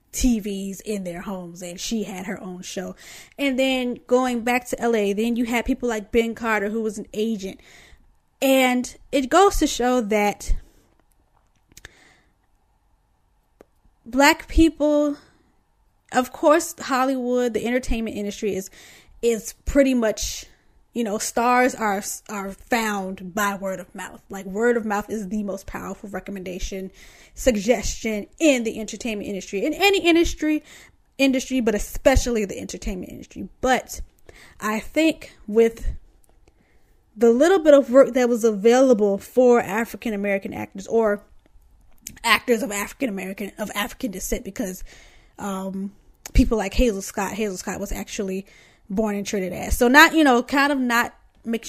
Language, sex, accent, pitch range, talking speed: English, female, American, 205-255 Hz, 145 wpm